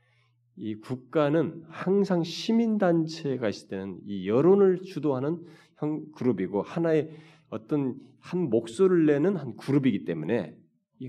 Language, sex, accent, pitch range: Korean, male, native, 115-170 Hz